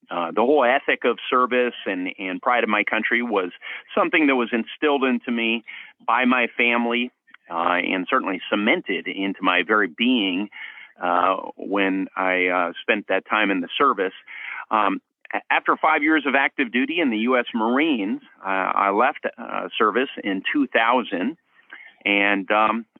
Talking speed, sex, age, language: 155 wpm, male, 40-59, English